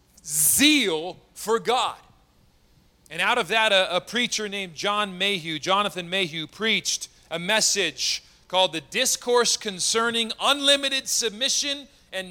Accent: American